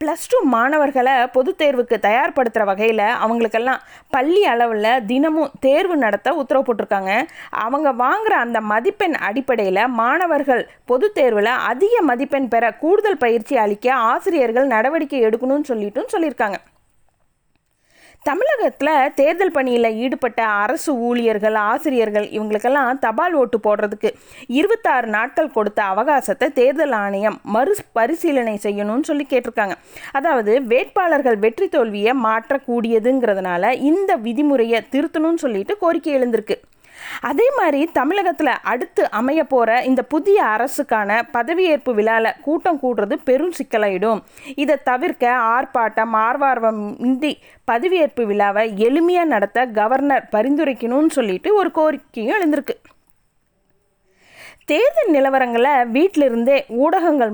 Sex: female